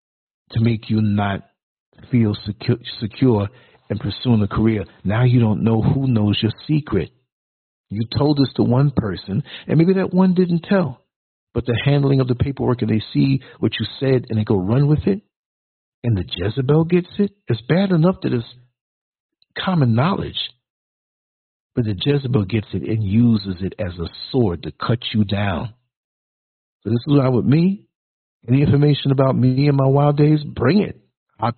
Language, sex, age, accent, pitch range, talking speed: English, male, 60-79, American, 105-140 Hz, 175 wpm